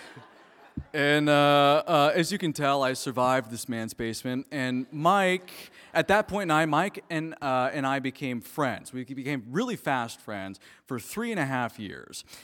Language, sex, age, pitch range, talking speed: English, male, 30-49, 130-165 Hz, 180 wpm